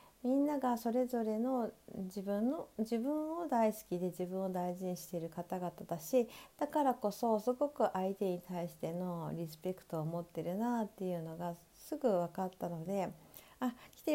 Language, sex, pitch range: Japanese, female, 160-235 Hz